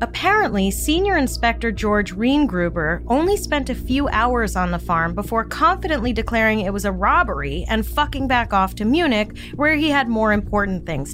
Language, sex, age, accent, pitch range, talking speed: English, female, 30-49, American, 180-260 Hz, 170 wpm